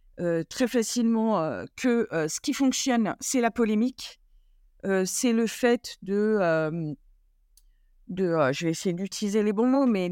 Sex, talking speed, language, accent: female, 165 wpm, French, French